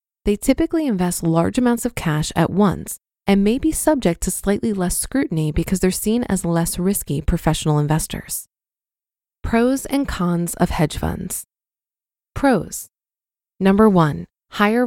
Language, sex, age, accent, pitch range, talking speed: English, female, 20-39, American, 170-220 Hz, 140 wpm